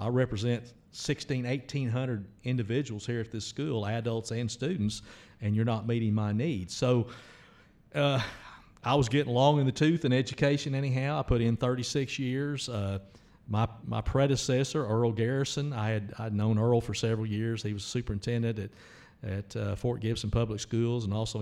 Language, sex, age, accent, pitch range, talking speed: English, male, 50-69, American, 110-125 Hz, 175 wpm